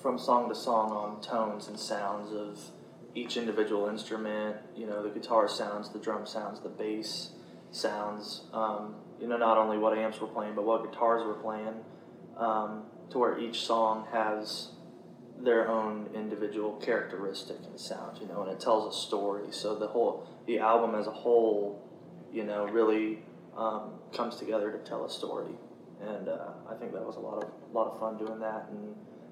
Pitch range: 105-110 Hz